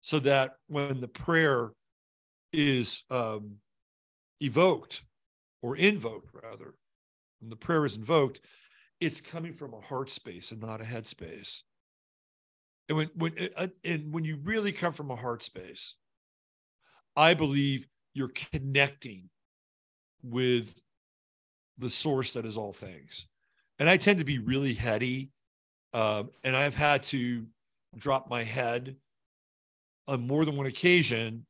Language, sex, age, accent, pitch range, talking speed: English, male, 50-69, American, 110-145 Hz, 135 wpm